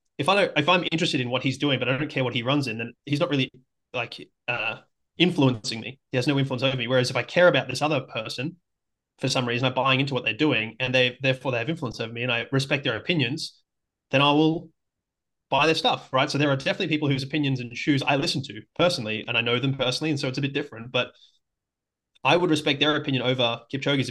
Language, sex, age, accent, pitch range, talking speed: English, male, 20-39, Australian, 125-145 Hz, 250 wpm